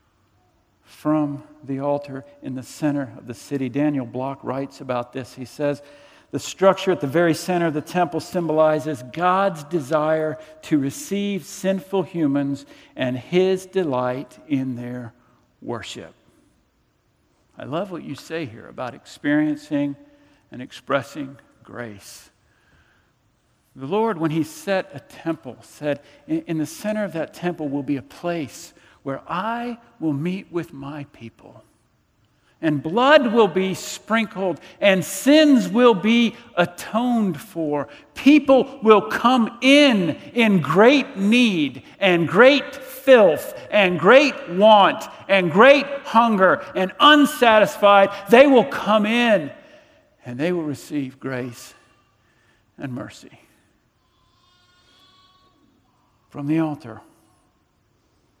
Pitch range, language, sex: 140-220 Hz, English, male